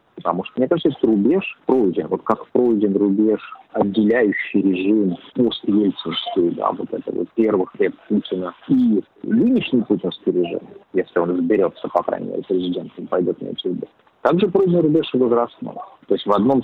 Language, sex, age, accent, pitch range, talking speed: Russian, male, 40-59, native, 90-115 Hz, 160 wpm